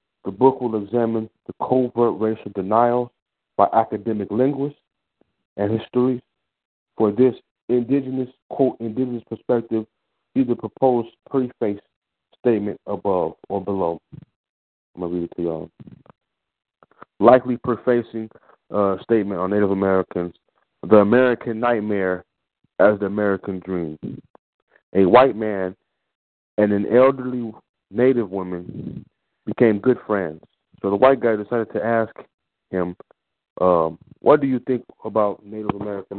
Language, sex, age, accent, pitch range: Japanese, male, 40-59, American, 100-125 Hz